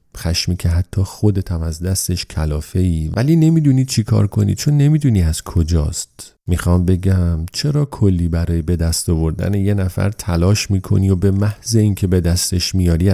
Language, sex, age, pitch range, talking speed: Persian, male, 40-59, 85-105 Hz, 165 wpm